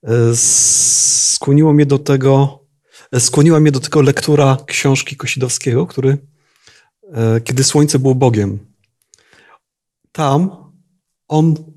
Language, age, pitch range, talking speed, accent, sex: Polish, 40-59, 130-160 Hz, 90 wpm, native, male